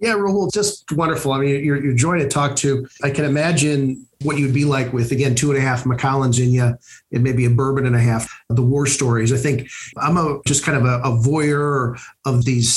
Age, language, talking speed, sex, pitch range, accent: 50-69, English, 235 wpm, male, 120-150 Hz, American